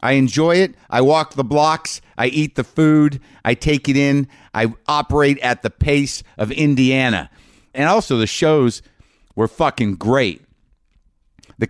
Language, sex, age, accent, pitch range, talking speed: English, male, 50-69, American, 100-130 Hz, 155 wpm